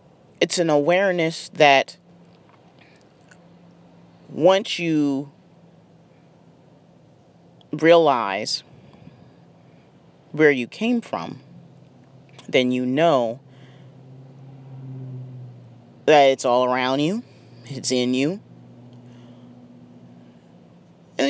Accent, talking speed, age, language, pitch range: American, 65 wpm, 30-49, English, 135-170 Hz